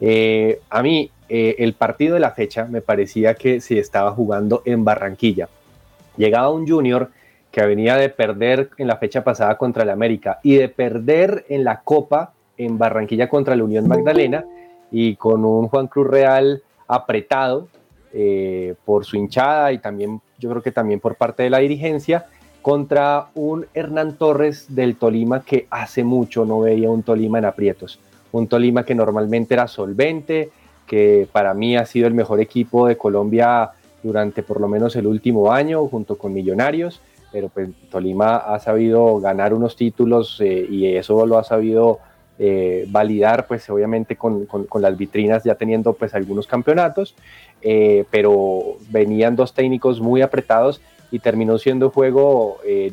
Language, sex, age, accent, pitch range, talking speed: Spanish, male, 30-49, Colombian, 105-130 Hz, 165 wpm